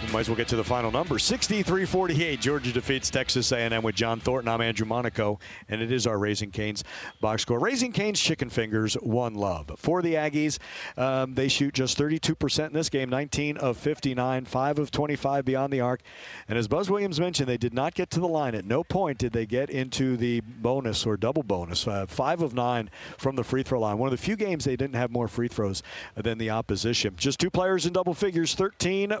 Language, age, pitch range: English, 50-69, 120-160 Hz